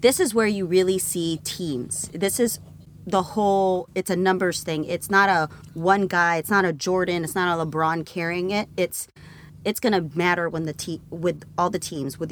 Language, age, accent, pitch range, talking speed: English, 30-49, American, 160-190 Hz, 205 wpm